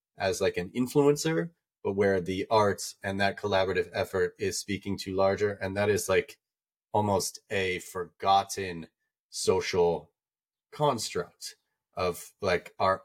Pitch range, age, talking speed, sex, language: 95-110 Hz, 30-49, 130 wpm, male, English